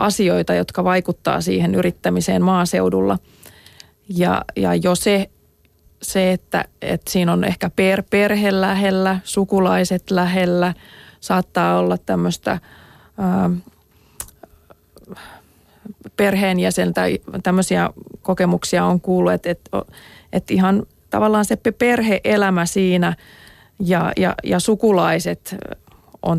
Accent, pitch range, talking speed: native, 170-190 Hz, 95 wpm